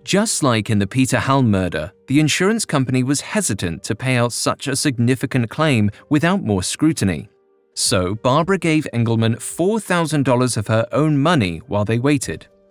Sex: male